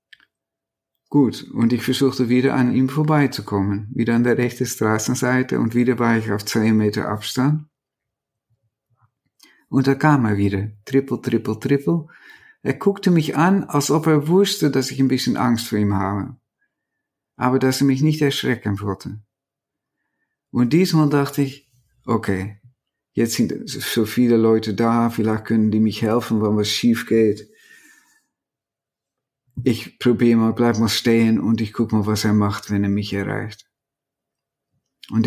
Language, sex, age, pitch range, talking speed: German, male, 50-69, 110-135 Hz, 155 wpm